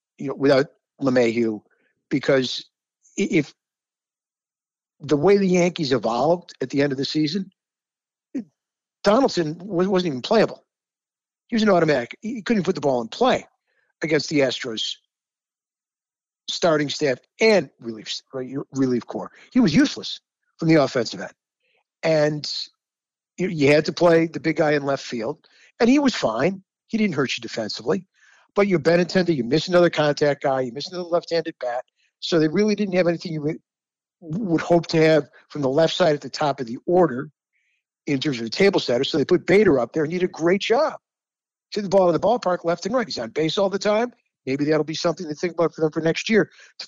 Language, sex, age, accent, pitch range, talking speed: English, male, 50-69, American, 140-190 Hz, 195 wpm